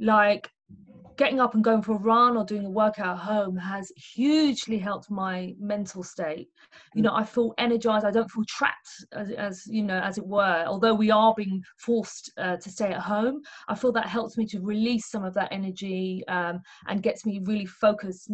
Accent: British